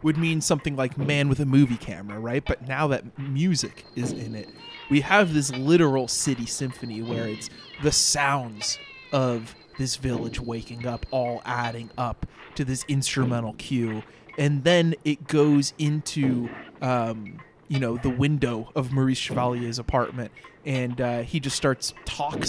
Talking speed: 155 wpm